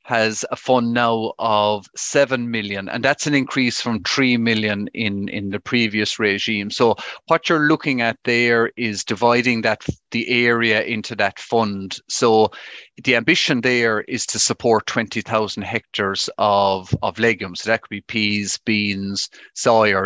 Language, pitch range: English, 105-120 Hz